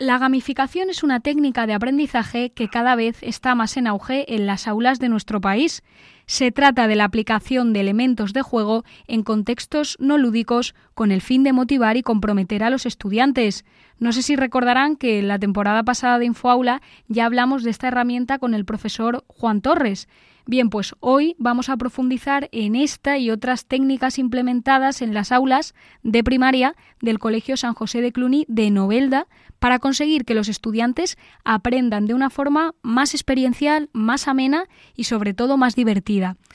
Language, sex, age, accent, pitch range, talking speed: English, female, 10-29, Spanish, 225-265 Hz, 175 wpm